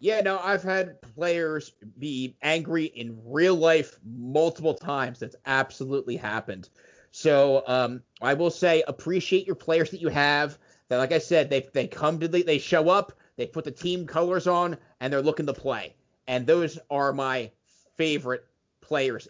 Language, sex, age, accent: English, male, 30-49, American